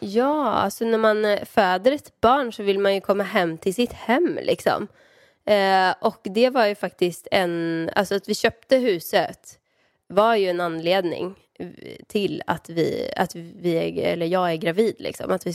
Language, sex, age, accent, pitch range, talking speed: Swedish, female, 20-39, native, 175-210 Hz, 180 wpm